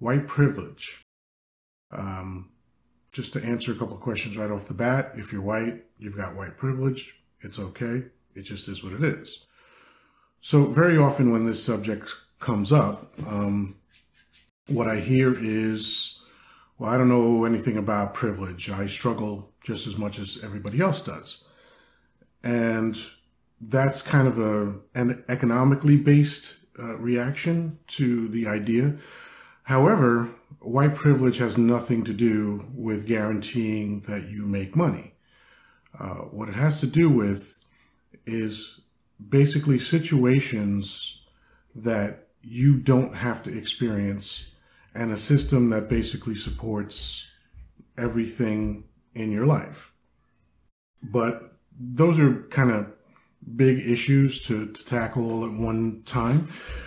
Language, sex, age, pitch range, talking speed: English, male, 30-49, 105-130 Hz, 130 wpm